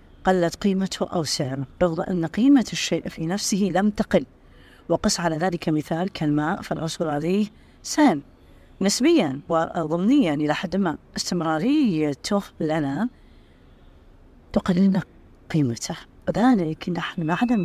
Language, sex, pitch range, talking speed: Arabic, female, 155-190 Hz, 105 wpm